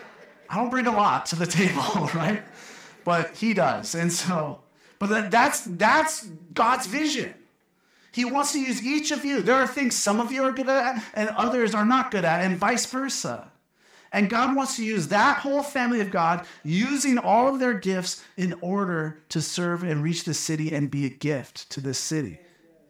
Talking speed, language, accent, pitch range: 195 wpm, English, American, 155-220 Hz